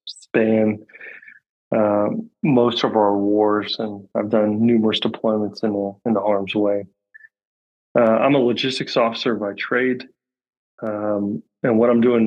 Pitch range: 105-120 Hz